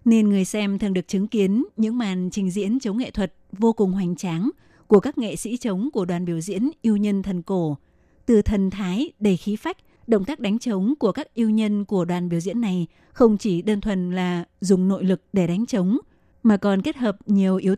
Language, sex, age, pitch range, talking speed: Vietnamese, female, 20-39, 185-220 Hz, 225 wpm